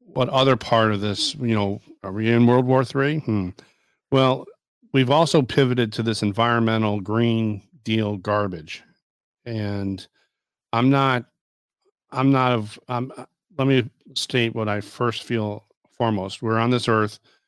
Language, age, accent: English, 50-69, American